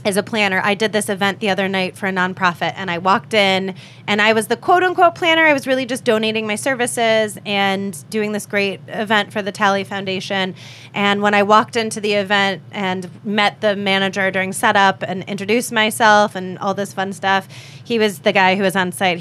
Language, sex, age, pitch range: English, female, 20-39, 195-240 Hz